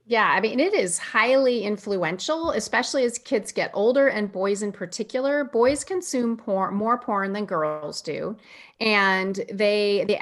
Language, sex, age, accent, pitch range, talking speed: English, female, 30-49, American, 190-240 Hz, 160 wpm